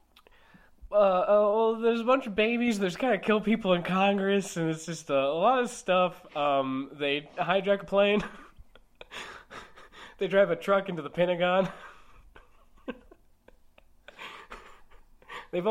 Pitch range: 180-230 Hz